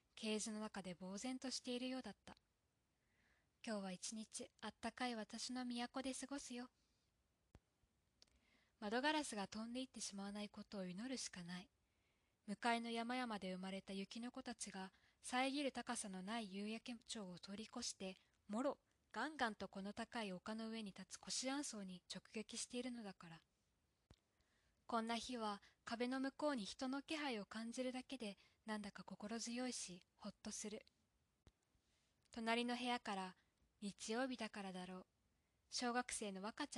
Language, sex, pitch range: Japanese, female, 200-250 Hz